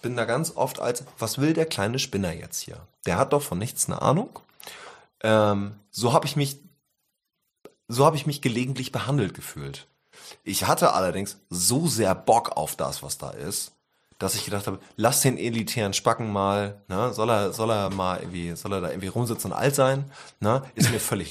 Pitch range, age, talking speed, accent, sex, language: 100-140 Hz, 30-49, 170 wpm, German, male, German